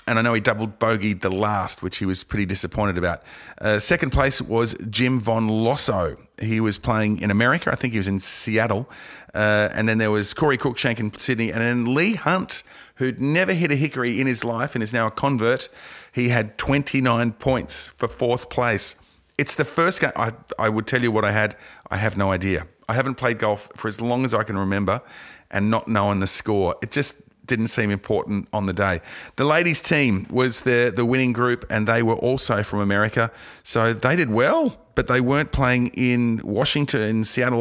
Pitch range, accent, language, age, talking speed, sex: 105-125 Hz, Australian, English, 40-59, 210 wpm, male